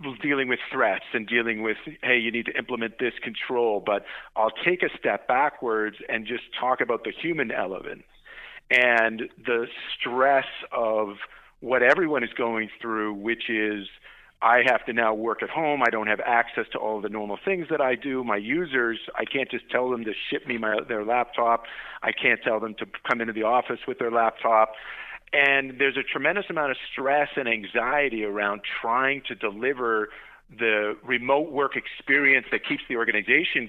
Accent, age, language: American, 50-69, English